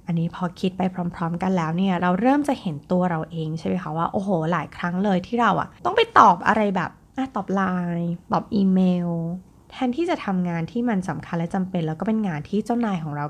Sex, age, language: female, 20-39, Thai